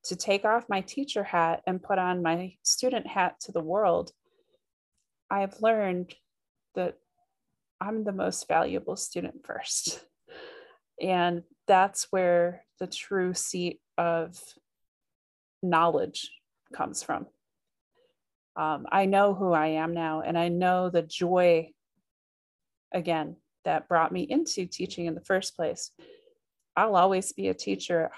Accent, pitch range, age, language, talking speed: American, 170-210 Hz, 30-49, English, 135 wpm